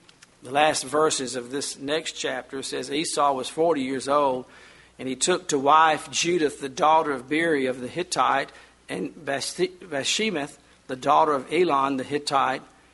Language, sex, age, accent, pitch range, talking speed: English, male, 50-69, American, 120-150 Hz, 160 wpm